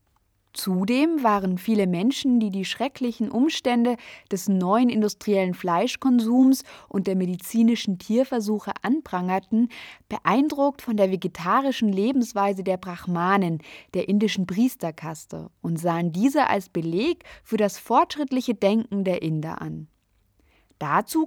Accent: German